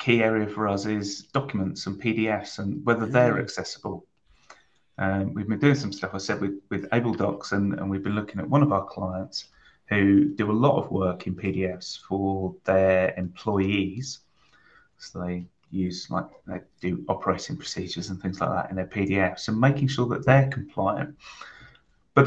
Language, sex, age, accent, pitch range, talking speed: English, male, 30-49, British, 95-120 Hz, 180 wpm